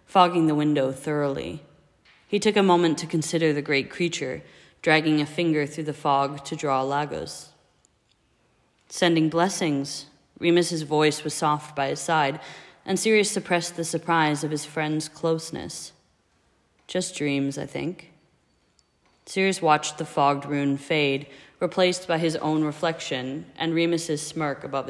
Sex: female